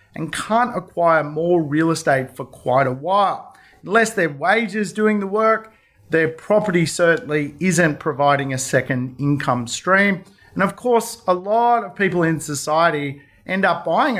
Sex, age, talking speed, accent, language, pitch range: male, 40-59, 155 wpm, Australian, English, 145-205 Hz